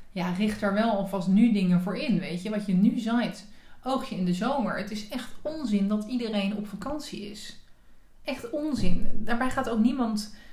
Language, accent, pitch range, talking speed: Dutch, Dutch, 190-235 Hz, 200 wpm